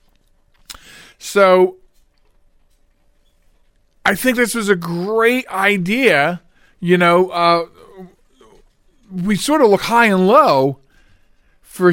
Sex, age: male, 40-59